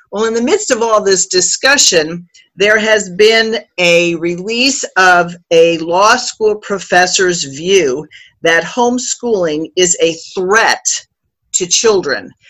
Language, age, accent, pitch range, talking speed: English, 50-69, American, 165-200 Hz, 125 wpm